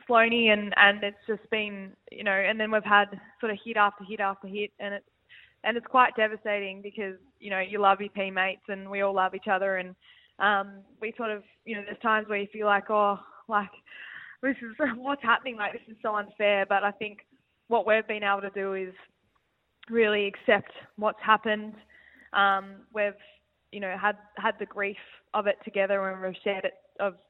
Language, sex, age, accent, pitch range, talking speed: English, female, 10-29, Australian, 190-215 Hz, 200 wpm